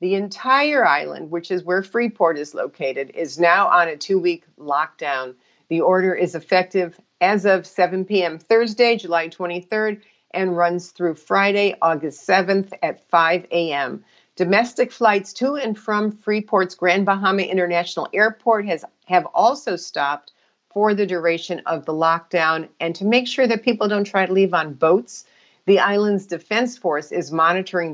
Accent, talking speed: American, 155 wpm